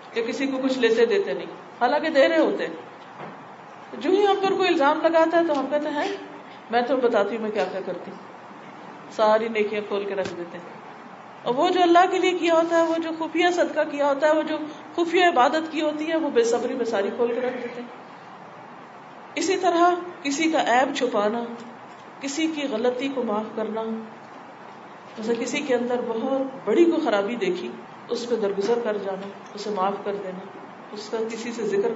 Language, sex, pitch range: Urdu, female, 230-320 Hz